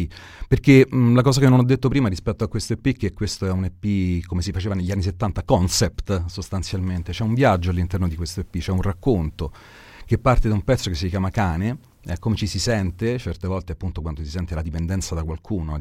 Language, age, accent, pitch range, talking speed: Italian, 40-59, native, 85-105 Hz, 230 wpm